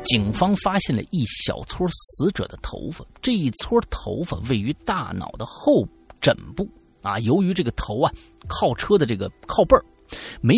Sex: male